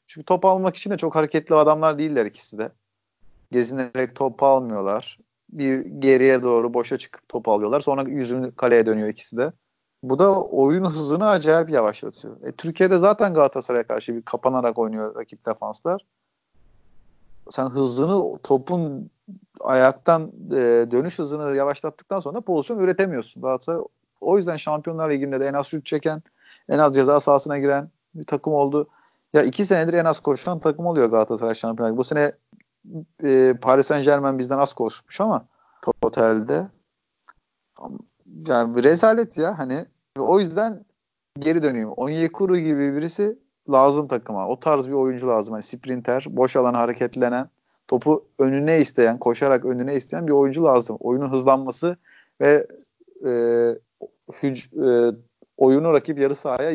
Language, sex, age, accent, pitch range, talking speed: Turkish, male, 40-59, native, 125-160 Hz, 140 wpm